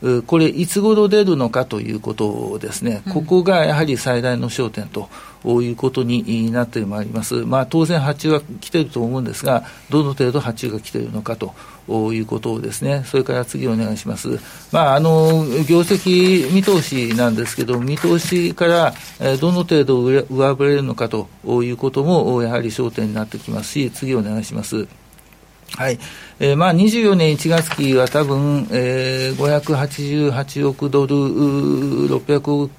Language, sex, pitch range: Japanese, male, 120-160 Hz